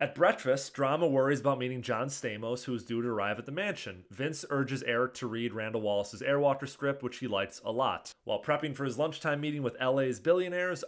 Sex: male